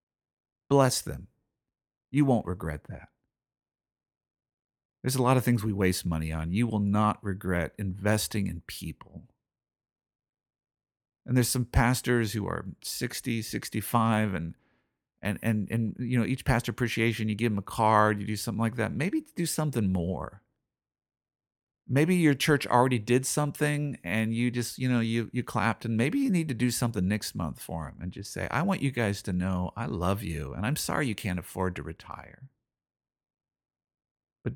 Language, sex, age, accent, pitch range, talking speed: English, male, 50-69, American, 95-125 Hz, 170 wpm